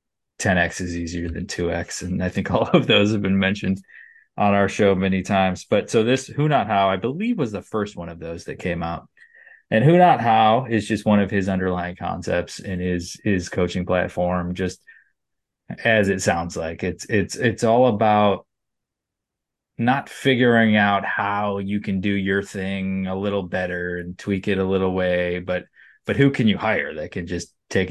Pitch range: 90-105 Hz